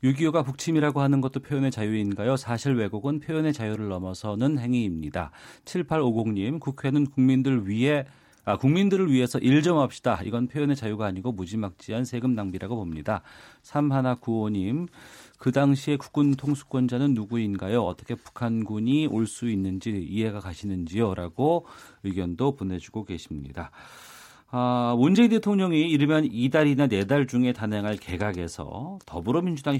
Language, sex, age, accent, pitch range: Korean, male, 40-59, native, 105-140 Hz